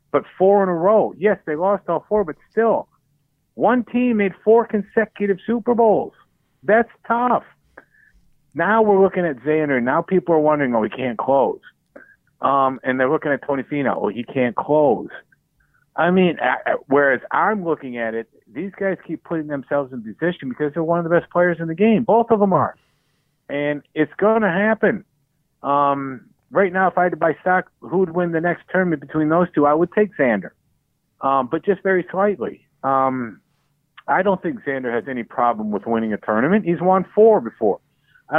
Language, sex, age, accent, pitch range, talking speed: English, male, 50-69, American, 145-195 Hz, 195 wpm